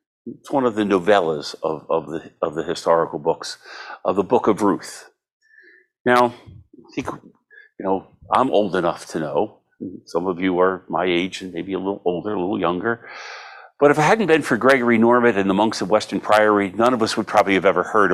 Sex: male